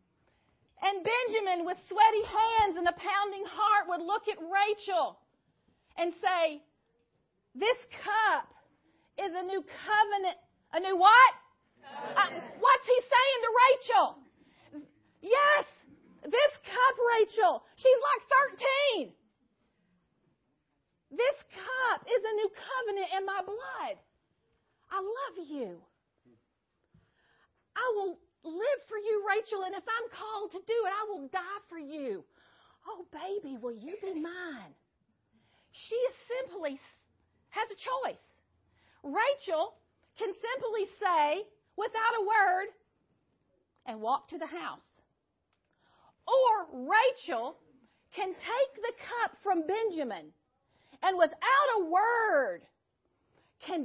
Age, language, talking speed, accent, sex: 40-59, English, 115 wpm, American, female